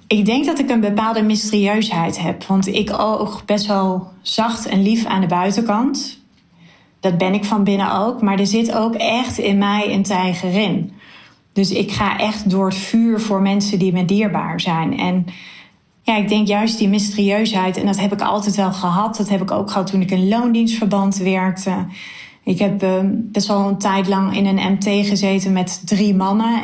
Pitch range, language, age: 190-215 Hz, Dutch, 30-49